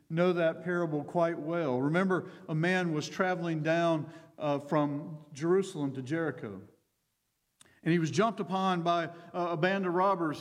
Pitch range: 150-180 Hz